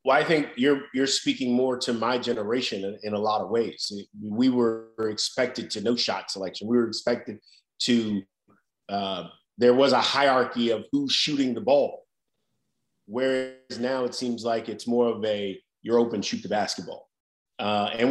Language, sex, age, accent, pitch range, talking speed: English, male, 30-49, American, 120-140 Hz, 180 wpm